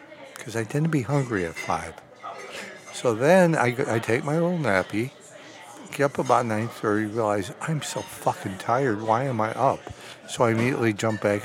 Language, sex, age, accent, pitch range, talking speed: English, male, 60-79, American, 105-135 Hz, 180 wpm